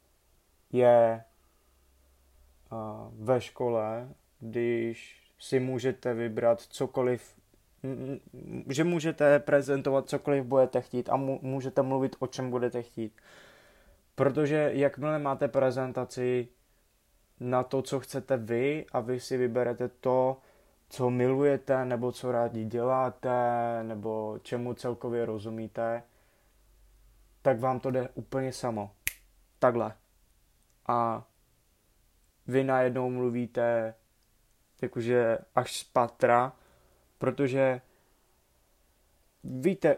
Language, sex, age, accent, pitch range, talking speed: Czech, male, 20-39, native, 115-130 Hz, 90 wpm